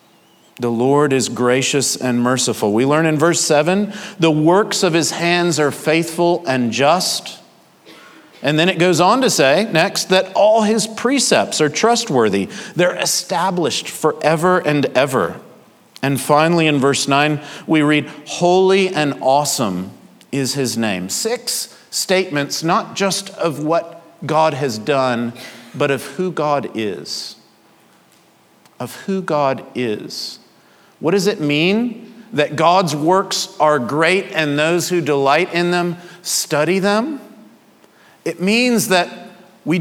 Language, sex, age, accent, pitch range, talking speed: English, male, 50-69, American, 145-185 Hz, 135 wpm